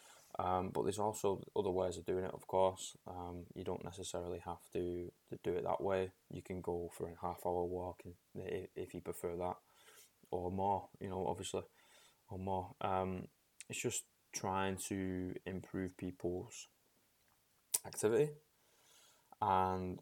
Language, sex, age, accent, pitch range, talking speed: English, male, 10-29, British, 90-95 Hz, 155 wpm